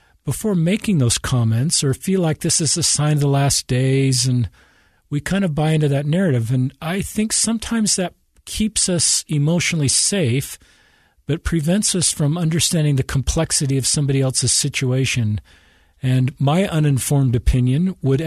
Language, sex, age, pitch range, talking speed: English, male, 50-69, 125-170 Hz, 160 wpm